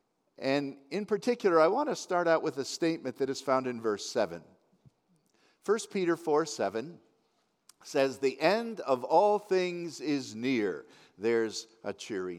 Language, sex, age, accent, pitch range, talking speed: English, male, 50-69, American, 125-175 Hz, 155 wpm